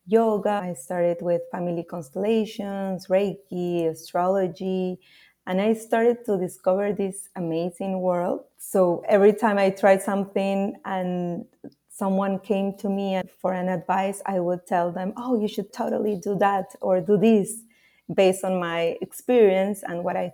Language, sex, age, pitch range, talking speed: English, female, 30-49, 175-195 Hz, 150 wpm